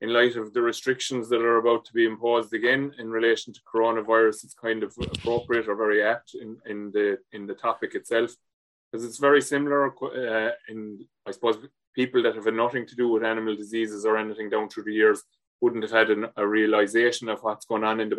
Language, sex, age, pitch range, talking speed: English, male, 20-39, 110-130 Hz, 220 wpm